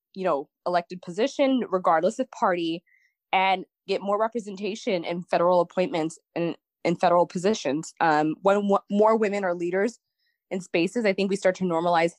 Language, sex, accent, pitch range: English, female, American, 175-210 Hz